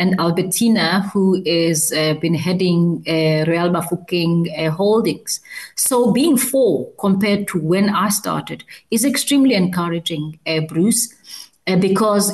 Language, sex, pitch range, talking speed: English, female, 170-210 Hz, 130 wpm